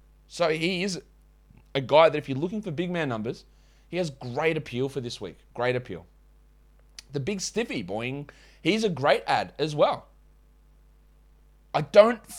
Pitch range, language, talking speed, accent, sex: 125-170 Hz, English, 165 wpm, Australian, male